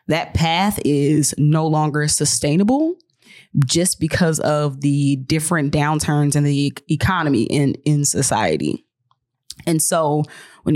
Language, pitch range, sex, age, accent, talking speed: English, 140-175 Hz, female, 20-39, American, 125 wpm